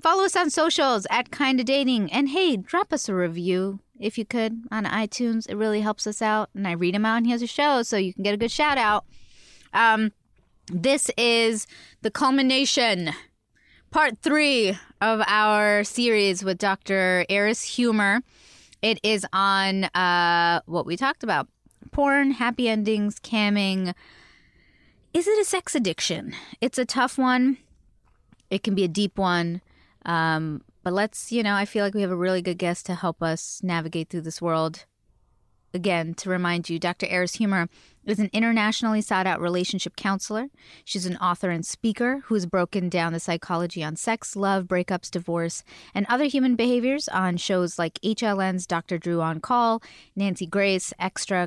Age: 20-39